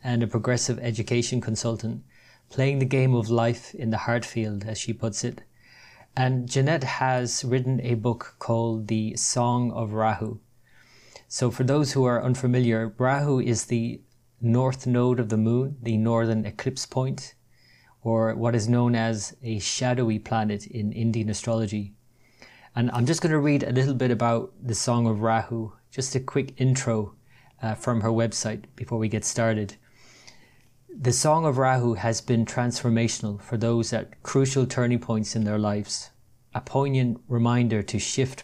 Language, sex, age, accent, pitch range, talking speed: English, male, 30-49, Irish, 110-125 Hz, 165 wpm